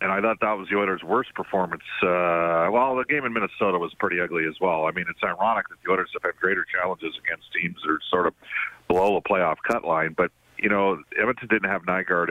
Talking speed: 240 wpm